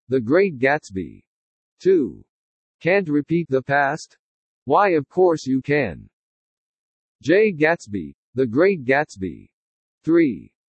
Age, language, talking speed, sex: 50-69, English, 105 wpm, male